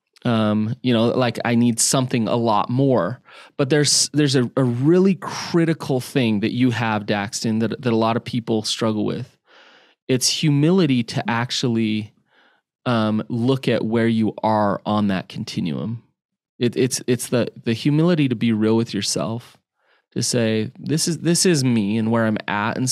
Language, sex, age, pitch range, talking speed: English, male, 20-39, 115-150 Hz, 175 wpm